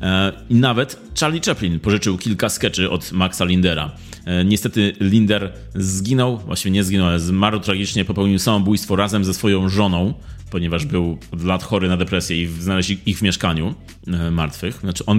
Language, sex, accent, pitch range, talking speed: Polish, male, native, 90-110 Hz, 155 wpm